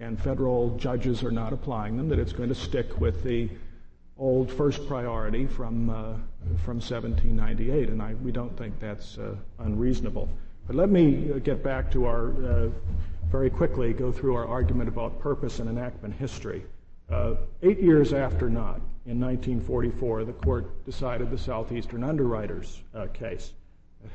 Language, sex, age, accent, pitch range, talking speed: English, male, 50-69, American, 110-130 Hz, 160 wpm